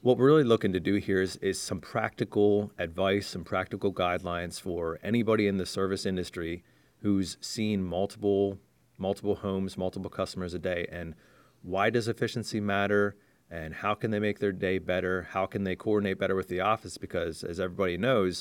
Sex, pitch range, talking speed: male, 90-105 Hz, 180 wpm